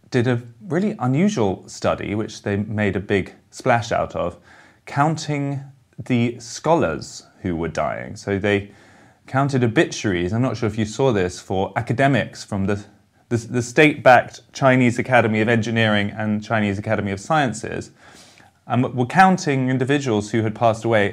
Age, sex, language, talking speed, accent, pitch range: 30-49, male, English, 155 wpm, British, 100-120 Hz